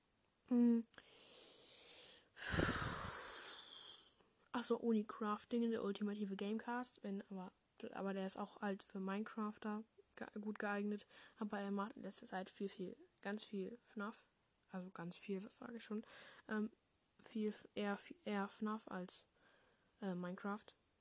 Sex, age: female, 10-29